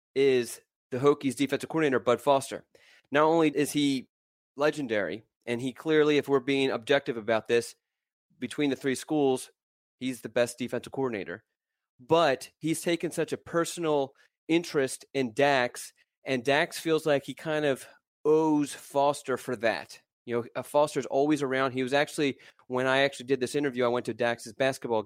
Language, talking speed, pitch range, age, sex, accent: English, 165 wpm, 125-145 Hz, 30-49, male, American